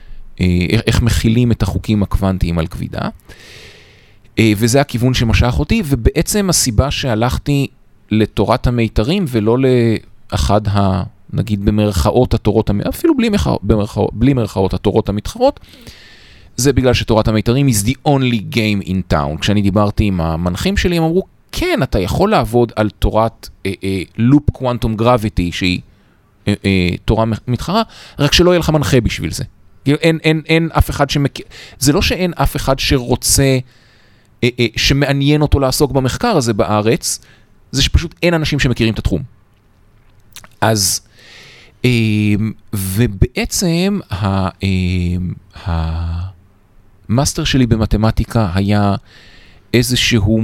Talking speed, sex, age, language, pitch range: 125 wpm, male, 30-49, Hebrew, 100-135 Hz